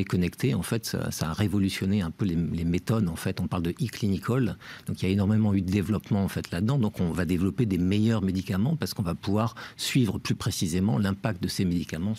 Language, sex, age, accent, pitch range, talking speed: French, male, 50-69, French, 90-110 Hz, 230 wpm